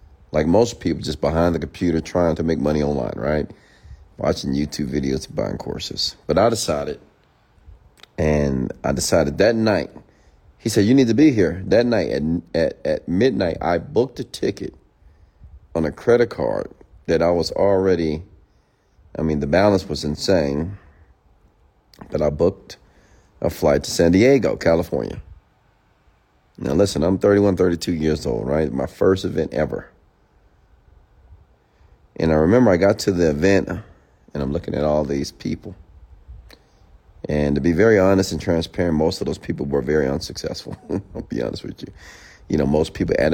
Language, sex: English, male